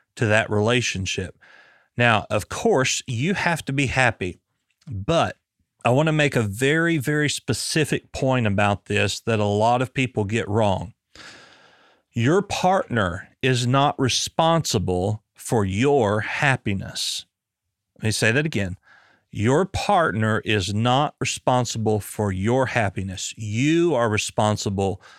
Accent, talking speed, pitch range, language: American, 125 wpm, 105-135 Hz, English